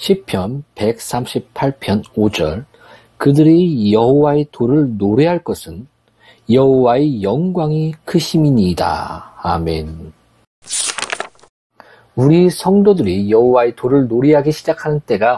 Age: 40-59